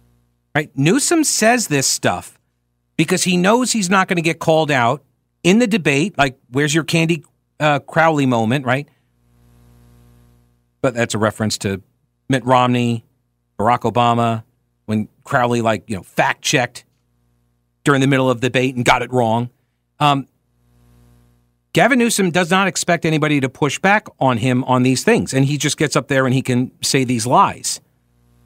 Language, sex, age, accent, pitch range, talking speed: English, male, 50-69, American, 115-170 Hz, 165 wpm